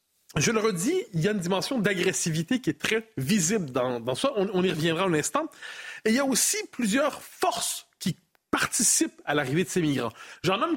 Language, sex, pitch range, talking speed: French, male, 175-260 Hz, 210 wpm